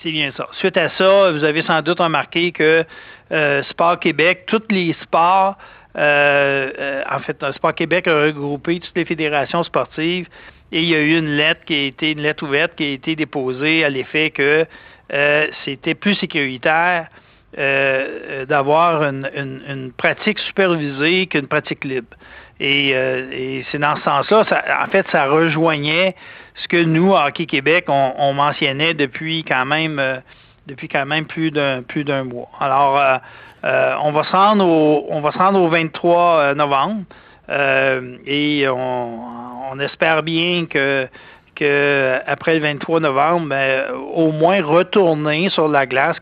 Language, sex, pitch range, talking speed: French, male, 140-170 Hz, 160 wpm